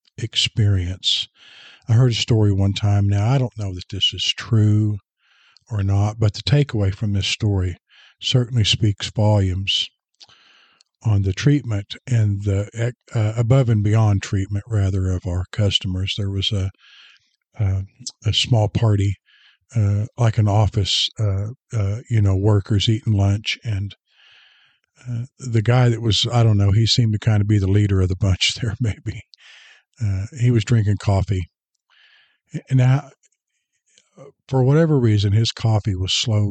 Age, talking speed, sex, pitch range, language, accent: 50-69, 155 wpm, male, 100-115 Hz, English, American